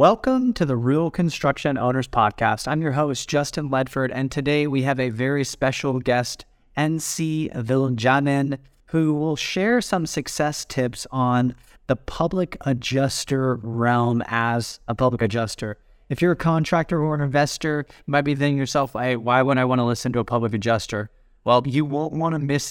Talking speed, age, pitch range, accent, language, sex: 175 wpm, 30-49, 120-155 Hz, American, English, male